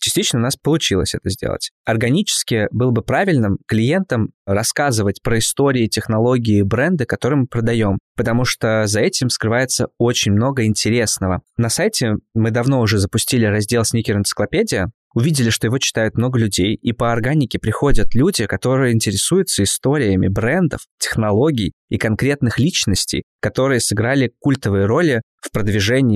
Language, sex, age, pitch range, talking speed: Russian, male, 20-39, 110-130 Hz, 140 wpm